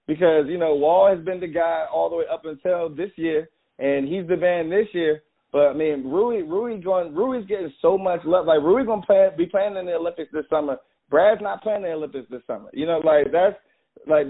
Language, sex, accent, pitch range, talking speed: English, male, American, 160-200 Hz, 235 wpm